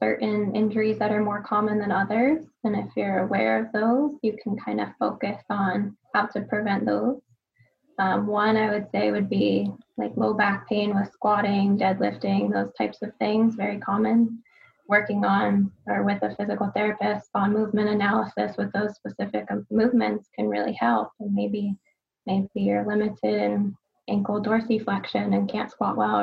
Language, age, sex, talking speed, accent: English, 10-29, female, 165 wpm, American